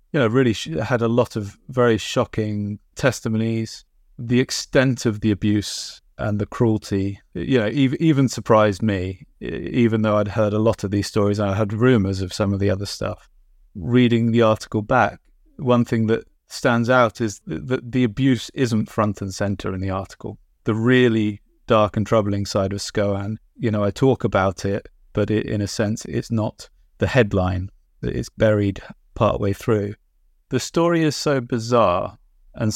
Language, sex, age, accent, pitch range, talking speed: English, male, 30-49, British, 100-120 Hz, 170 wpm